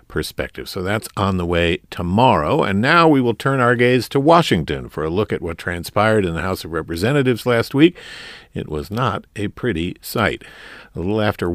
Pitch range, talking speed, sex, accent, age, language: 85-115 Hz, 200 wpm, male, American, 50-69, English